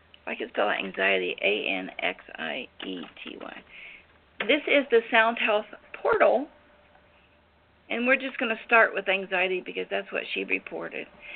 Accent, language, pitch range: American, English, 195-235 Hz